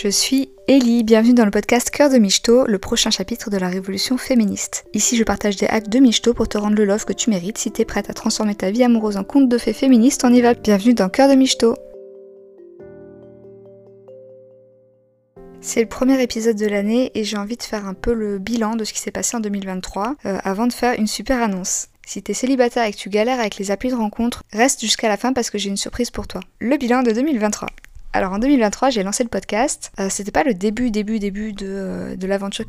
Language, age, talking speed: French, 20-39, 230 wpm